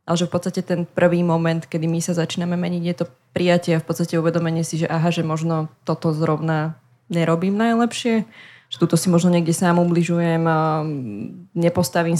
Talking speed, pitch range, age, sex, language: 175 wpm, 165-185 Hz, 20-39, female, Slovak